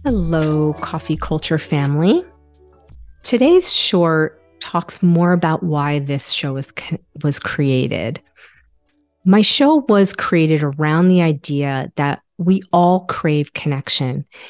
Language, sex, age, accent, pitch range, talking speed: English, female, 40-59, American, 150-185 Hz, 110 wpm